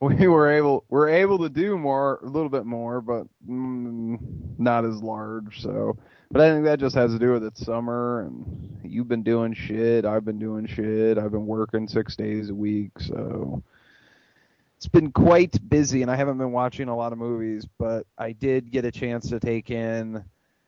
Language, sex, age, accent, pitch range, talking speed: English, male, 30-49, American, 110-130 Hz, 200 wpm